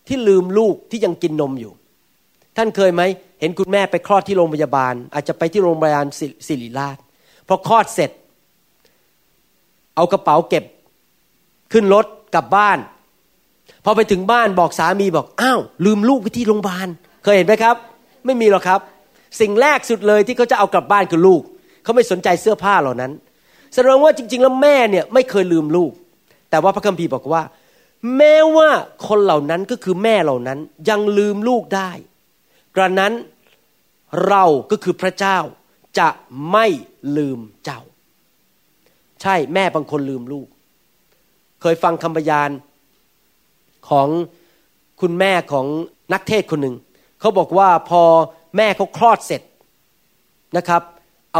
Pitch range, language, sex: 165-215 Hz, Thai, male